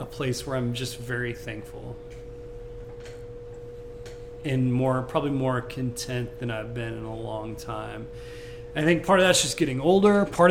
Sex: male